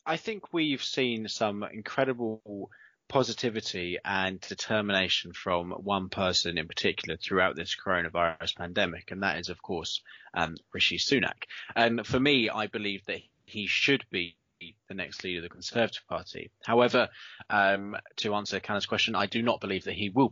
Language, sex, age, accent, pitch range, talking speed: English, male, 20-39, British, 100-135 Hz, 160 wpm